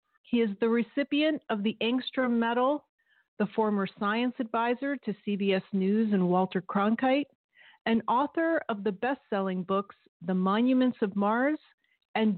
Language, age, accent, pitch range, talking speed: English, 40-59, American, 195-255 Hz, 140 wpm